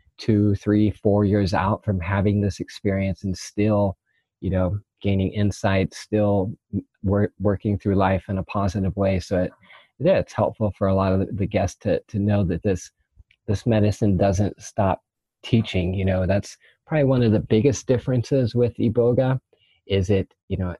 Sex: male